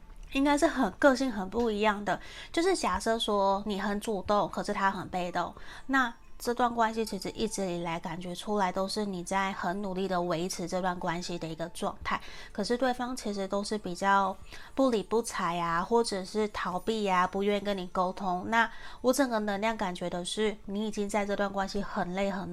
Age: 20-39